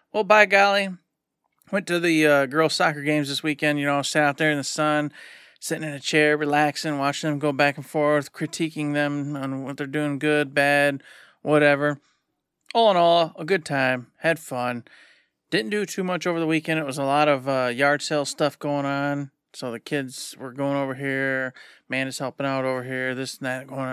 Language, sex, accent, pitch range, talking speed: English, male, American, 140-170 Hz, 210 wpm